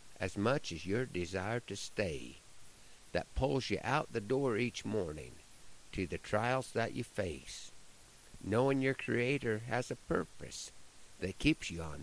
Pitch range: 95-125 Hz